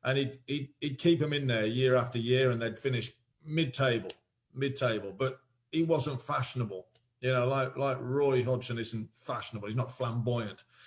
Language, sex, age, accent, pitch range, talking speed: English, male, 40-59, British, 115-145 Hz, 170 wpm